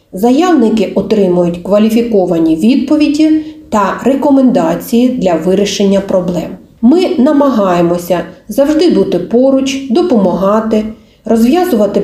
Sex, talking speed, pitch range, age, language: female, 80 wpm, 190-270 Hz, 40-59, Ukrainian